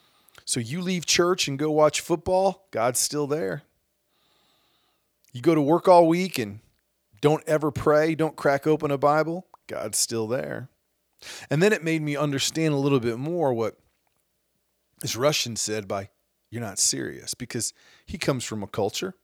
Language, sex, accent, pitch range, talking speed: English, male, American, 120-155 Hz, 165 wpm